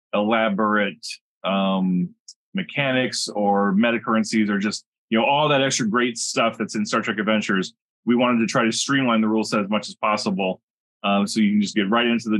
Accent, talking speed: American, 200 wpm